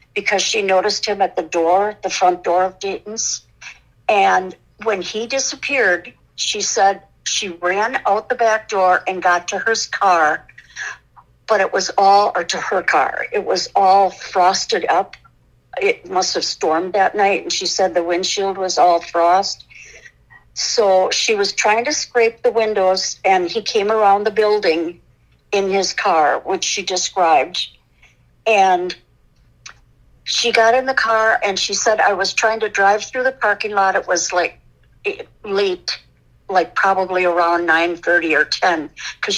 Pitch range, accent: 180-225 Hz, American